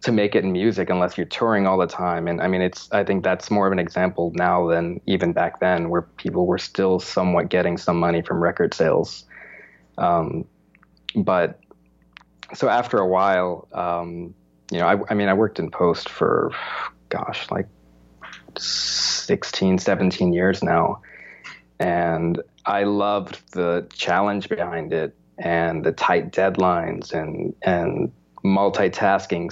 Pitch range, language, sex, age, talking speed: 85-95 Hz, English, male, 20-39, 150 wpm